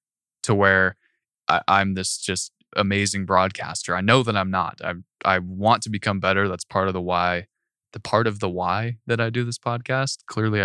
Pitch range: 95-120 Hz